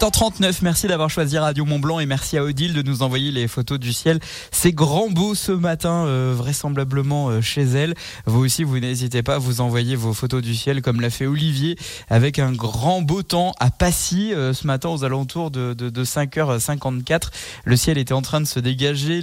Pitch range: 130-175 Hz